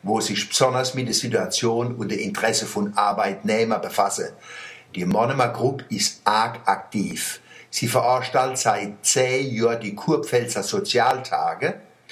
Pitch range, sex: 115-135 Hz, male